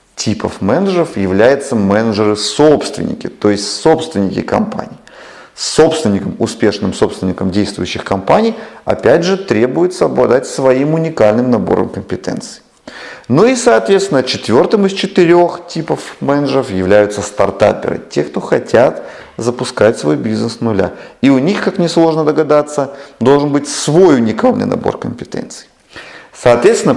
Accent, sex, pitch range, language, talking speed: native, male, 100-155 Hz, Russian, 115 wpm